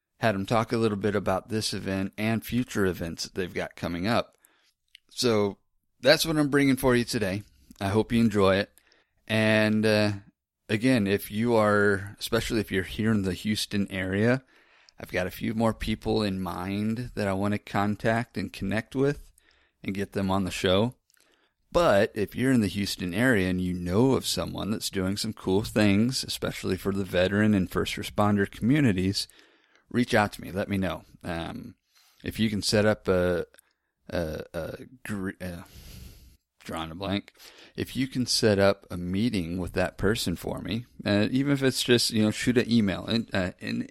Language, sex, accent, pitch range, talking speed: English, male, American, 95-115 Hz, 185 wpm